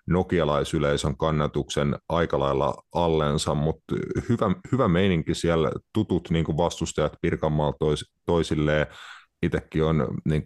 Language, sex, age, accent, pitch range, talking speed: Finnish, male, 30-49, native, 75-85 Hz, 110 wpm